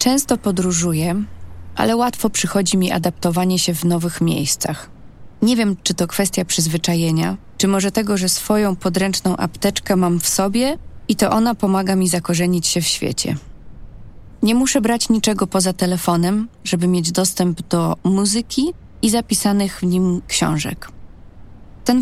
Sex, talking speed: female, 145 wpm